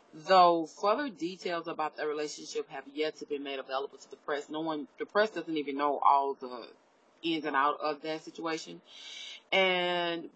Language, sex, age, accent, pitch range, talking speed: English, female, 20-39, American, 150-190 Hz, 180 wpm